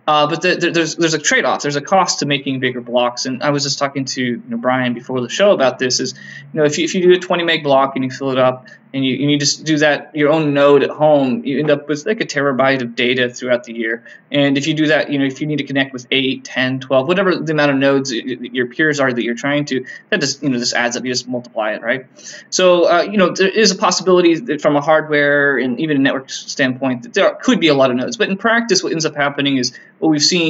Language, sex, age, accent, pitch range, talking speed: English, male, 20-39, American, 130-160 Hz, 290 wpm